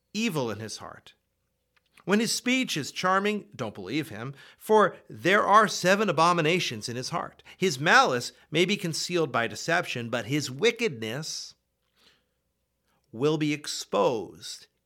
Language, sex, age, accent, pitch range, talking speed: English, male, 40-59, American, 125-190 Hz, 135 wpm